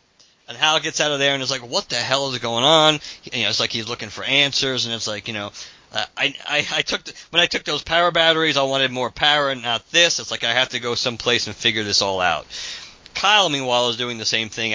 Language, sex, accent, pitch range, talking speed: English, male, American, 105-135 Hz, 265 wpm